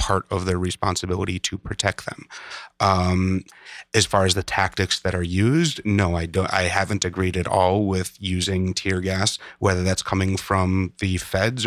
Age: 30-49